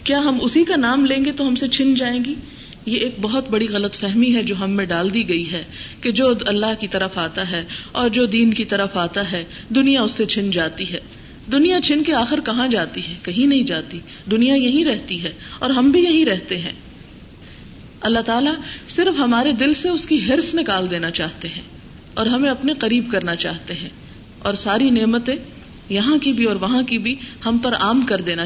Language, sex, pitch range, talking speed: Urdu, female, 195-265 Hz, 215 wpm